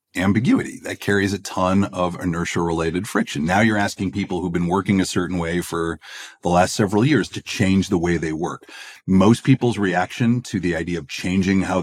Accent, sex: American, male